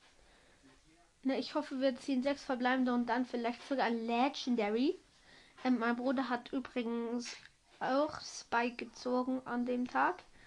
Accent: German